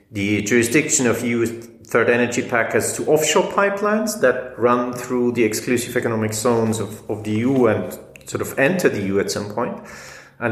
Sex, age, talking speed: male, 30-49, 175 wpm